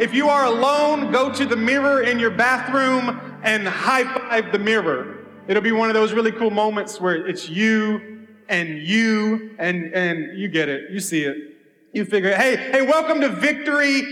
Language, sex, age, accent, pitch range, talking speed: English, male, 30-49, American, 180-240 Hz, 185 wpm